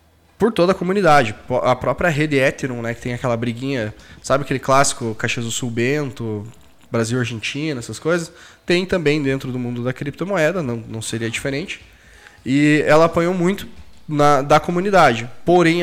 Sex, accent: male, Brazilian